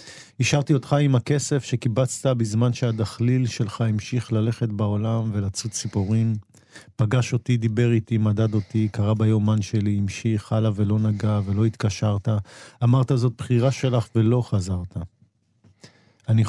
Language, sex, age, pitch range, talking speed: Hebrew, male, 40-59, 105-125 Hz, 125 wpm